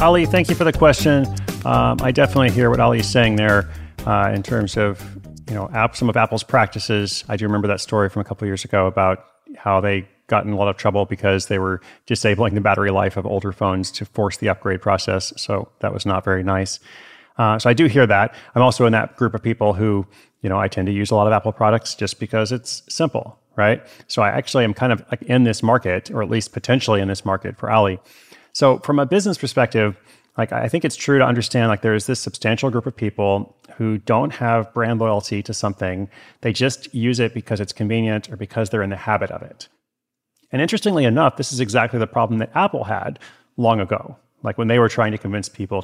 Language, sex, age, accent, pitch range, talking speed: English, male, 30-49, American, 100-120 Hz, 235 wpm